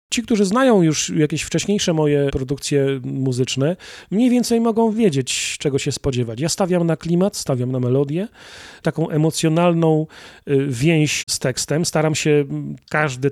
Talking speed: 145 wpm